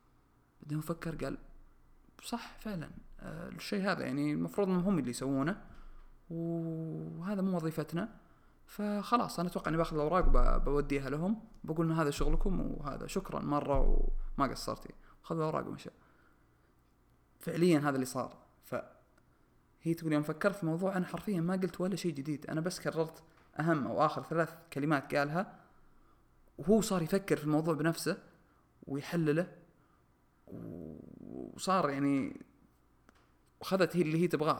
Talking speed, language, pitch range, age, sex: 130 wpm, Arabic, 130-170 Hz, 20-39, male